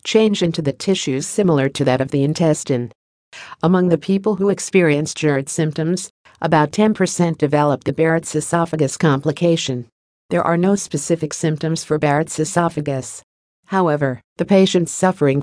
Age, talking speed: 50-69, 140 wpm